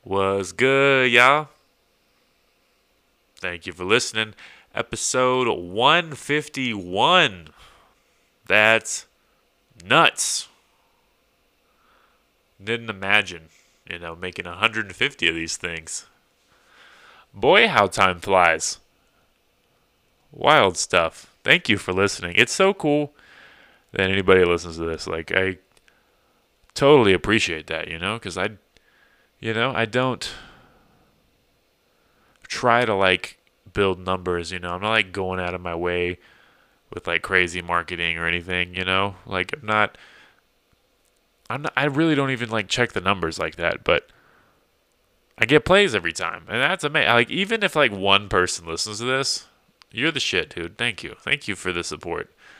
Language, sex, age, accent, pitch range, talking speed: English, male, 20-39, American, 90-130 Hz, 135 wpm